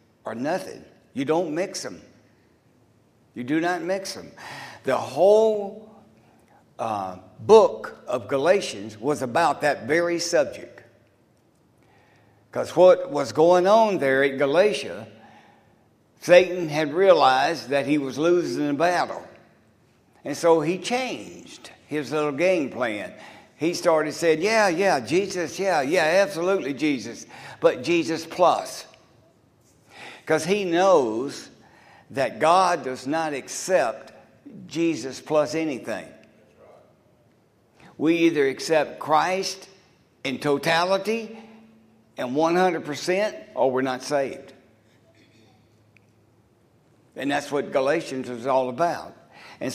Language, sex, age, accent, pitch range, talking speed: English, male, 60-79, American, 130-185 Hz, 110 wpm